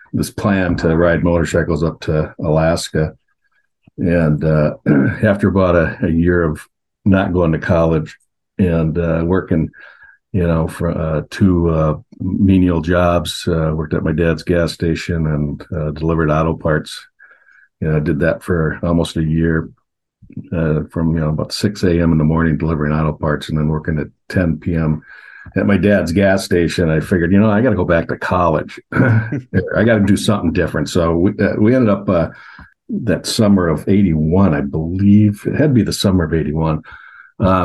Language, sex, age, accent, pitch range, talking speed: English, male, 50-69, American, 80-100 Hz, 185 wpm